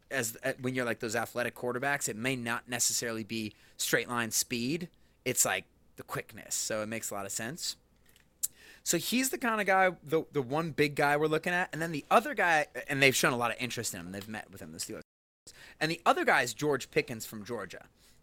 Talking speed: 225 wpm